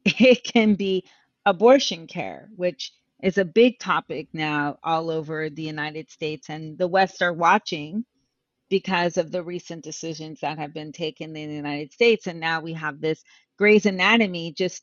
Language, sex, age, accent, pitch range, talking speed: English, female, 40-59, American, 165-205 Hz, 170 wpm